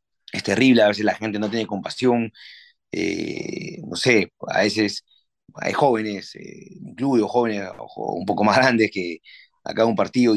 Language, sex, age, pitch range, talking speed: Spanish, male, 30-49, 100-125 Hz, 160 wpm